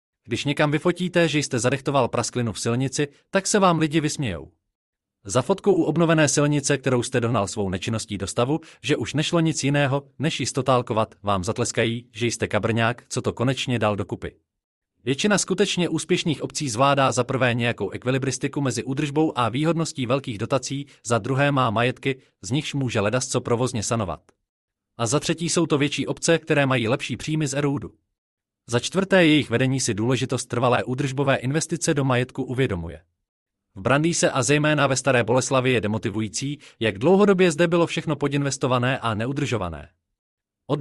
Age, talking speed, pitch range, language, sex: 30-49, 160 wpm, 115-150 Hz, Czech, male